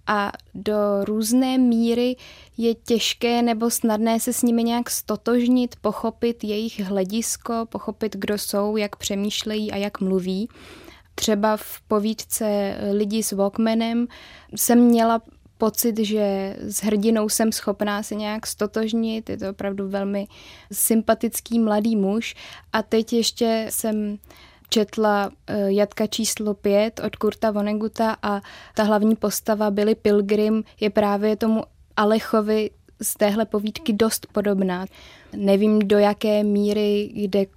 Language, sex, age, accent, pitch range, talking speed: Czech, female, 20-39, native, 205-225 Hz, 130 wpm